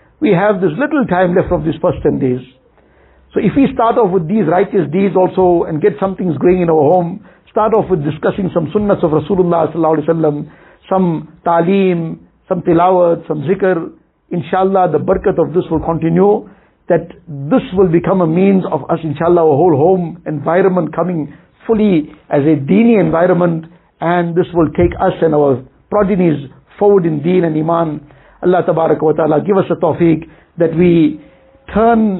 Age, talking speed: 60-79, 170 wpm